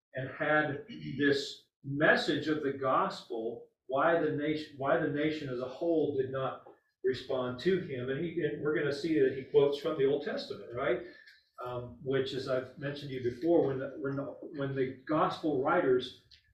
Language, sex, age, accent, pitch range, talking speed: English, male, 40-59, American, 120-160 Hz, 190 wpm